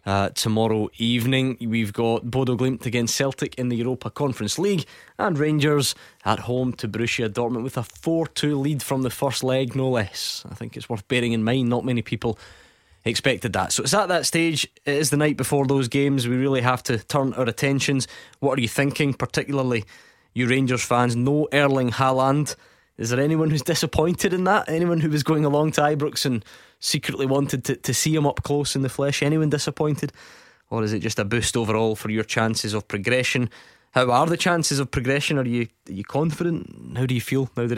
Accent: British